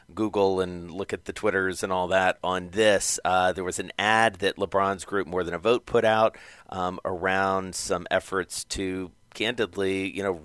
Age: 40-59